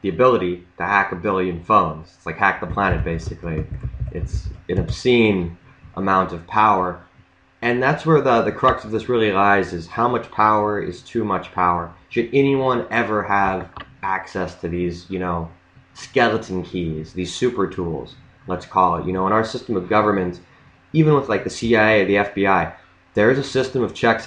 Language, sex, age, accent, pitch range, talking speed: English, male, 20-39, American, 90-105 Hz, 185 wpm